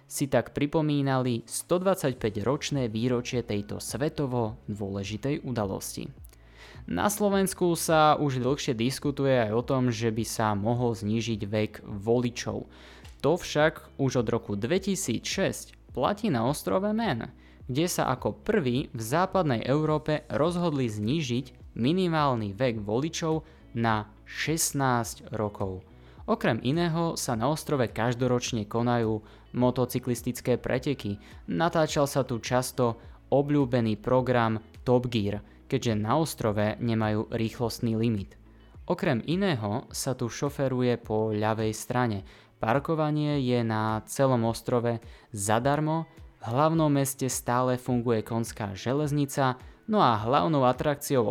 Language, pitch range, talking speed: Slovak, 110-140 Hz, 115 wpm